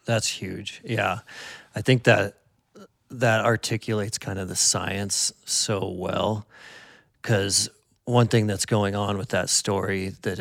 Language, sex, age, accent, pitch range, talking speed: English, male, 40-59, American, 90-110 Hz, 140 wpm